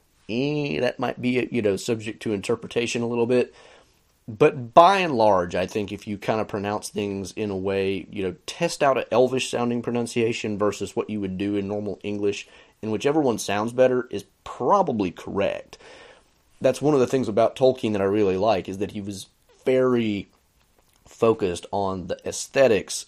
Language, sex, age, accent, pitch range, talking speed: English, male, 30-49, American, 95-120 Hz, 180 wpm